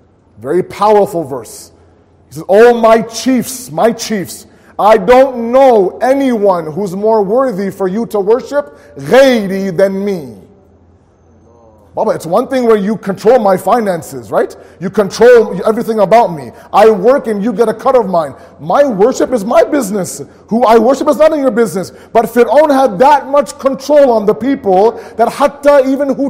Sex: male